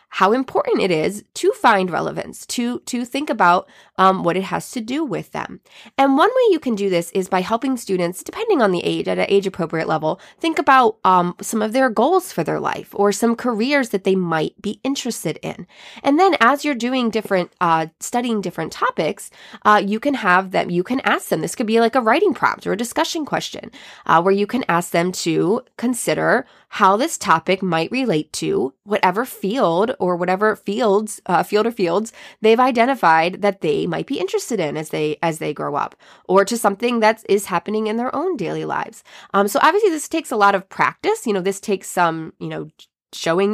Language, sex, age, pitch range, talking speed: English, female, 20-39, 180-240 Hz, 210 wpm